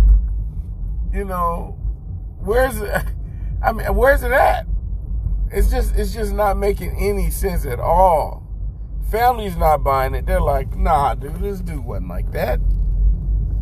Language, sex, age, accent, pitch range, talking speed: English, male, 40-59, American, 85-135 Hz, 140 wpm